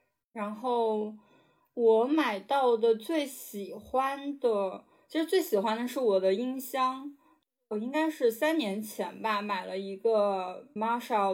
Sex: female